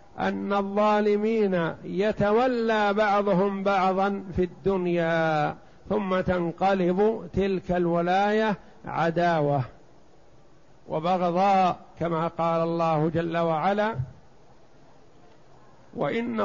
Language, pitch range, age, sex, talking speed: Arabic, 165-200 Hz, 50-69, male, 70 wpm